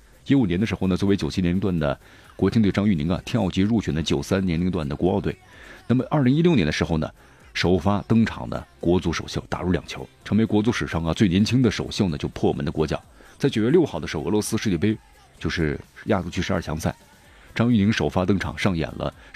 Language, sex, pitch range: Chinese, male, 80-110 Hz